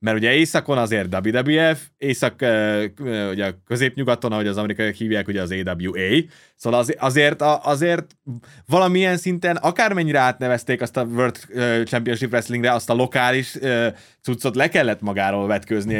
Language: Hungarian